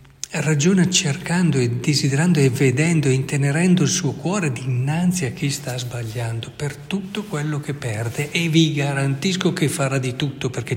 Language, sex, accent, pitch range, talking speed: Italian, male, native, 115-145 Hz, 160 wpm